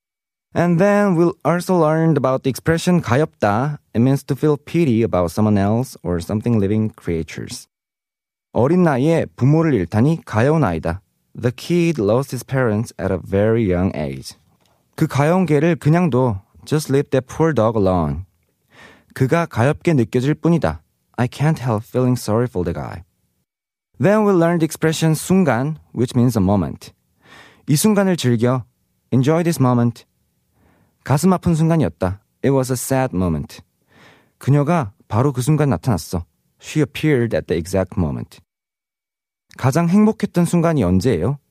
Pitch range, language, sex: 115-165 Hz, Korean, male